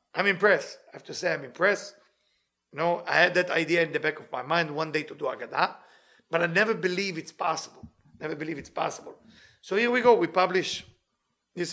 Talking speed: 215 wpm